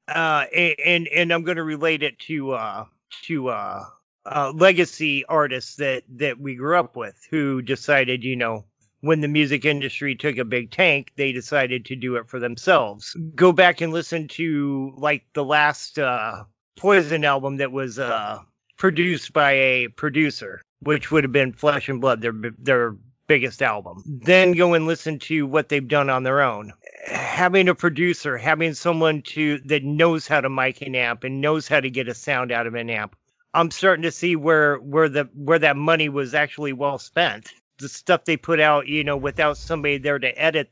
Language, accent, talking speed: English, American, 190 wpm